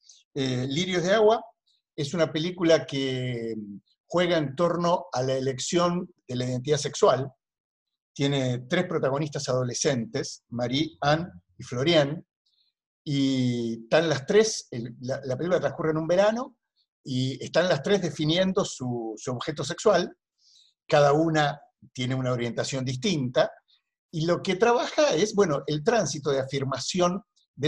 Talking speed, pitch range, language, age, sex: 140 wpm, 135-200 Hz, Spanish, 50-69, male